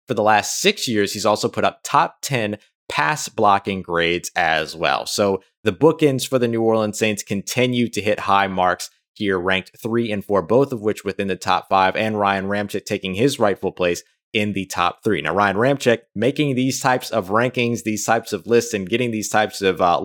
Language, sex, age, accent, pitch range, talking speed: English, male, 20-39, American, 95-125 Hz, 210 wpm